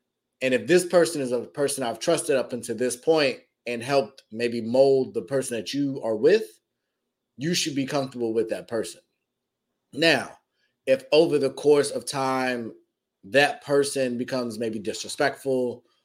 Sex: male